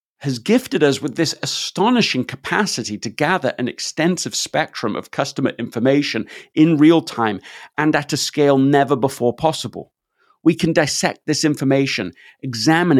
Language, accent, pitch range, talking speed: English, British, 115-150 Hz, 145 wpm